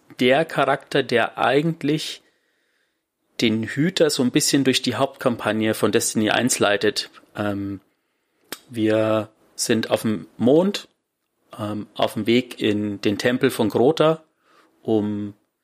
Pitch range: 105-125 Hz